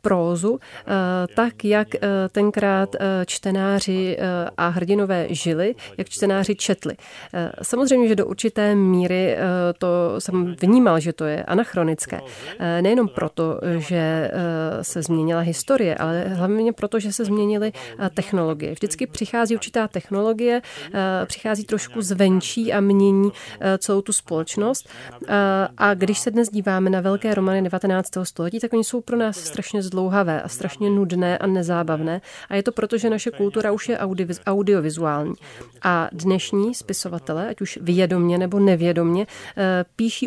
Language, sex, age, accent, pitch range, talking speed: Czech, female, 30-49, native, 180-210 Hz, 135 wpm